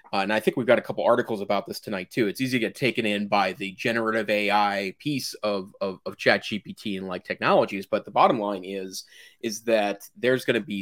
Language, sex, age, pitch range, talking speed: English, male, 30-49, 95-110 Hz, 235 wpm